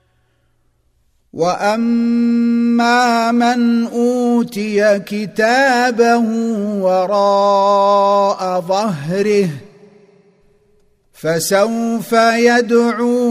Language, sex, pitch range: Arabic, male, 190-225 Hz